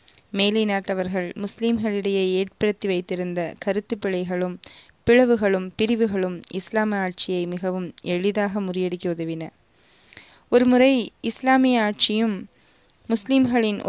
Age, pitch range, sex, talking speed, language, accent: 20-39, 190-225 Hz, female, 85 wpm, Tamil, native